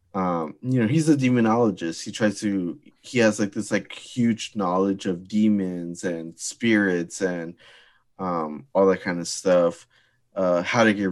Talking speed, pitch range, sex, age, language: 165 wpm, 95-110 Hz, male, 20-39, English